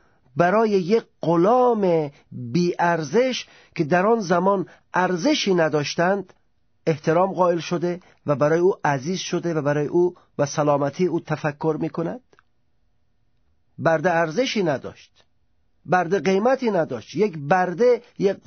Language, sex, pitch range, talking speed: Persian, male, 160-220 Hz, 120 wpm